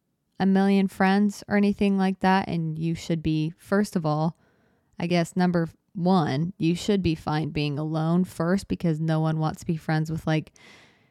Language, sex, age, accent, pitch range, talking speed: English, female, 20-39, American, 170-195 Hz, 185 wpm